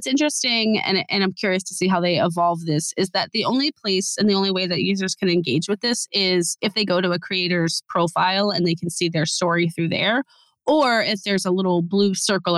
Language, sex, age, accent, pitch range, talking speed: English, female, 20-39, American, 170-200 Hz, 240 wpm